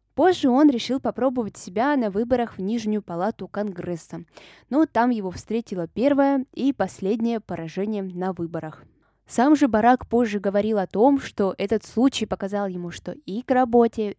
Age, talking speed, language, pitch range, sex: 20-39, 155 wpm, Russian, 185-250 Hz, female